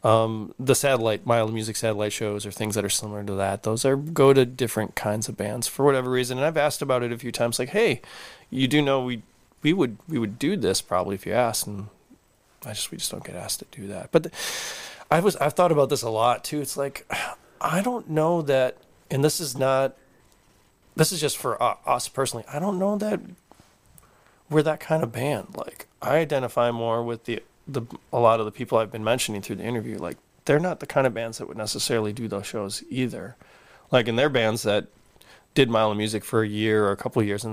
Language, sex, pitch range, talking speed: English, male, 110-140 Hz, 230 wpm